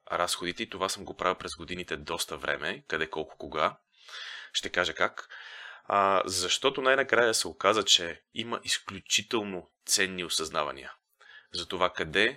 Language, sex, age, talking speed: Bulgarian, male, 20-39, 135 wpm